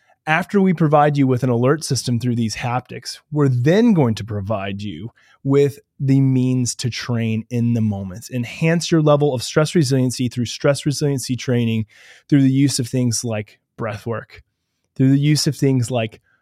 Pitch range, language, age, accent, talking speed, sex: 120-155 Hz, English, 20-39, American, 180 wpm, male